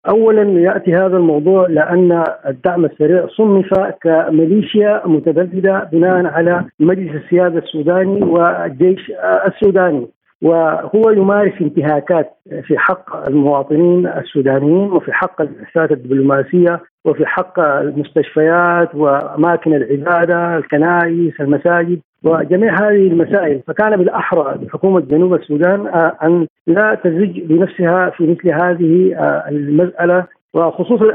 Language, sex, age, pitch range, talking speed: Arabic, male, 50-69, 160-190 Hz, 100 wpm